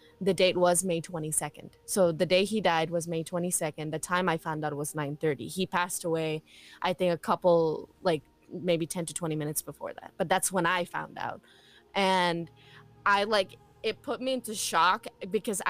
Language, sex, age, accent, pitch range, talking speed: English, female, 20-39, American, 165-200 Hz, 190 wpm